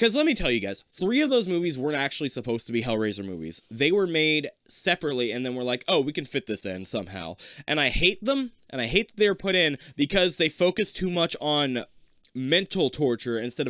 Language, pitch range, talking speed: English, 125-190 Hz, 230 wpm